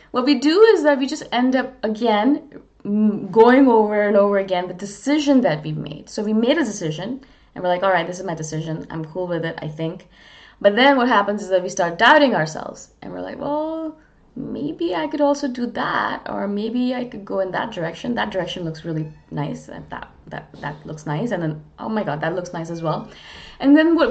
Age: 20-39